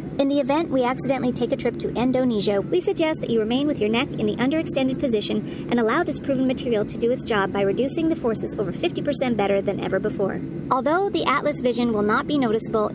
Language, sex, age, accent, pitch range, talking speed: English, male, 40-59, American, 210-275 Hz, 225 wpm